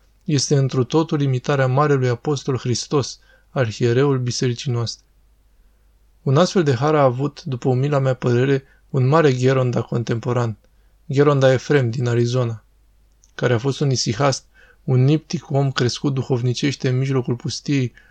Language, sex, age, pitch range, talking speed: Romanian, male, 20-39, 125-140 Hz, 135 wpm